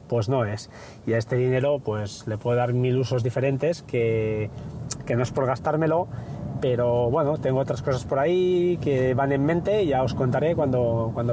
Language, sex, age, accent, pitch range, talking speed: Spanish, male, 30-49, Spanish, 125-155 Hz, 195 wpm